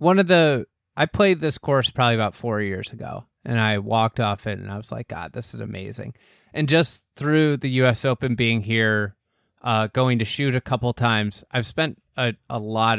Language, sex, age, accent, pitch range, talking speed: English, male, 30-49, American, 110-130 Hz, 215 wpm